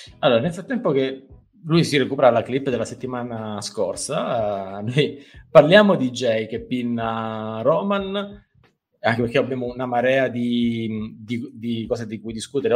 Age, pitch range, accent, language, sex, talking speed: 20-39, 110-140 Hz, native, Italian, male, 150 wpm